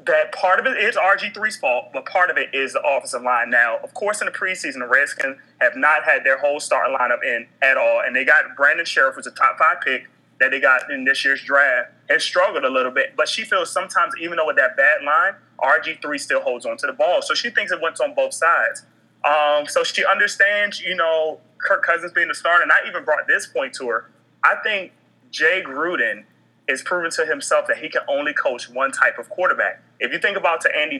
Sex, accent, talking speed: male, American, 235 wpm